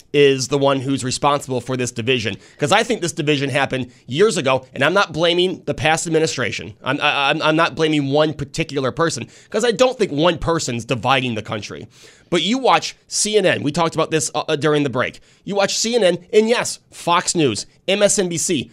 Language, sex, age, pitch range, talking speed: English, male, 30-49, 135-180 Hz, 190 wpm